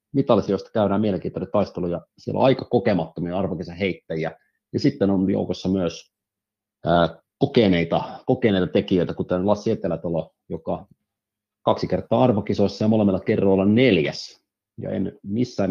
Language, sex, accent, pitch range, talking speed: Finnish, male, native, 90-105 Hz, 120 wpm